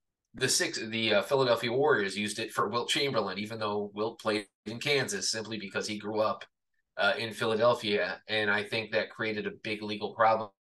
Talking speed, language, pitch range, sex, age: 190 wpm, English, 105-120 Hz, male, 20-39